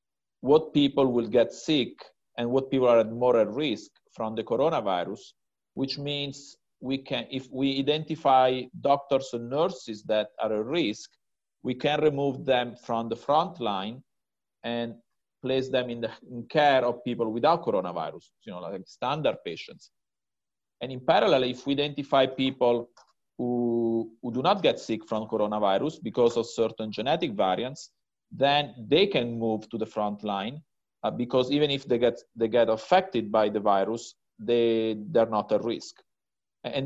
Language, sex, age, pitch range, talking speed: English, male, 40-59, 115-140 Hz, 165 wpm